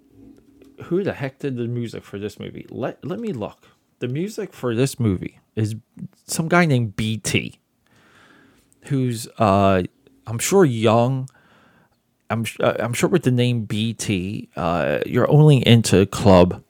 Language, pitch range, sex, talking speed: English, 100-130 Hz, male, 145 wpm